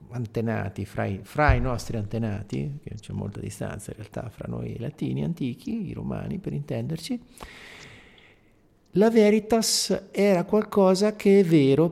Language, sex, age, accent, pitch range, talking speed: Italian, male, 50-69, native, 110-155 Hz, 140 wpm